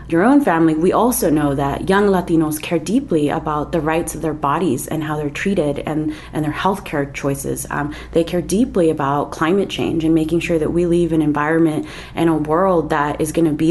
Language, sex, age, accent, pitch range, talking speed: English, female, 30-49, American, 155-175 Hz, 215 wpm